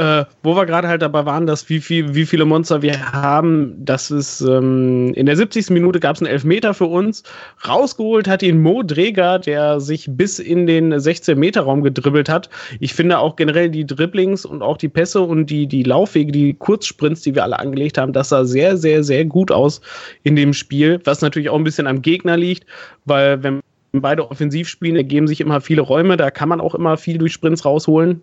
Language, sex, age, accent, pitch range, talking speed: German, male, 30-49, German, 145-175 Hz, 210 wpm